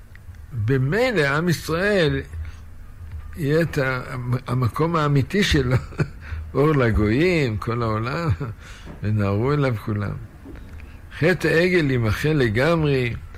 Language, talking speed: Hebrew, 85 wpm